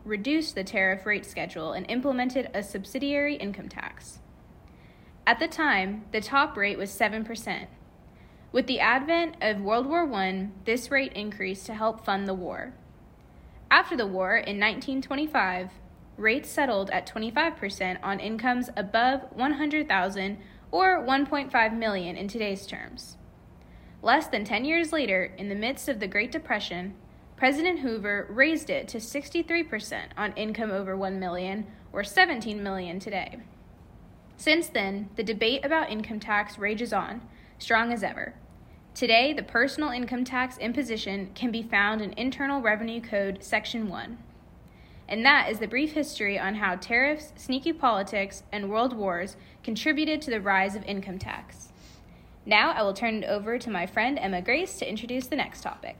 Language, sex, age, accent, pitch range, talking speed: English, female, 20-39, American, 200-265 Hz, 155 wpm